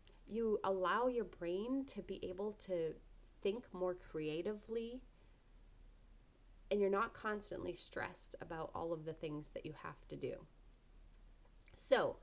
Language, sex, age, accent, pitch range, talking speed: English, female, 30-49, American, 175-240 Hz, 130 wpm